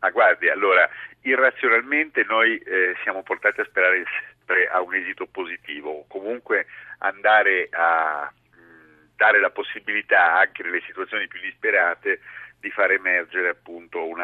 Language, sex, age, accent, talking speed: Italian, male, 50-69, native, 145 wpm